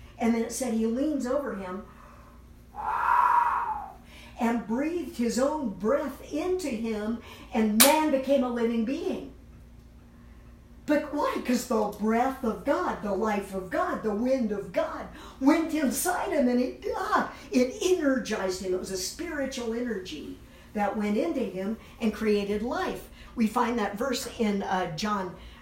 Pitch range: 215-275 Hz